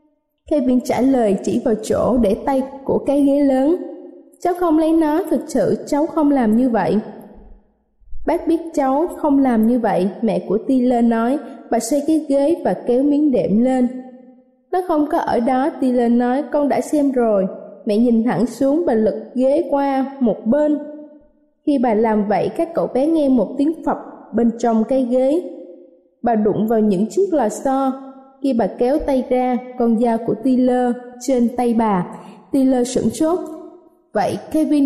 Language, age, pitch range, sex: Vietnamese, 20-39, 235-295 Hz, female